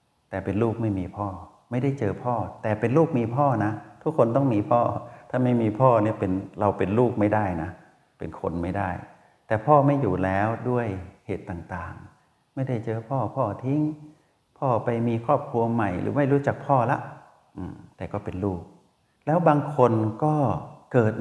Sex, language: male, Thai